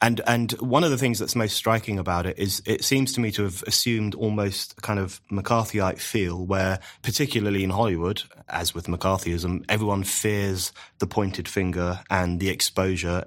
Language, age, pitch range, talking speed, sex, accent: English, 30-49, 95-110 Hz, 180 wpm, male, British